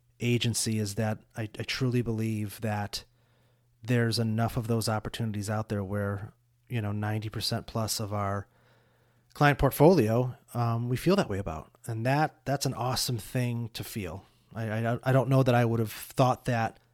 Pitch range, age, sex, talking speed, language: 110-130 Hz, 30-49, male, 170 wpm, English